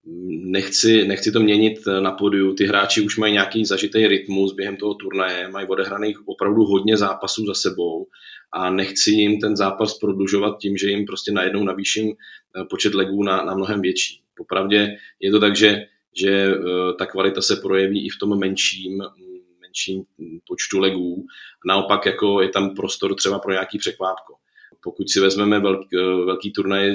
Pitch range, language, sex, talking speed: 95-105 Hz, Czech, male, 165 wpm